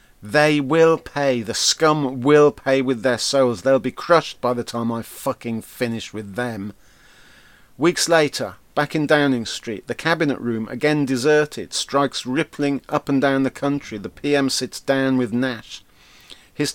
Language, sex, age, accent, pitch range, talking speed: English, male, 40-59, British, 120-155 Hz, 165 wpm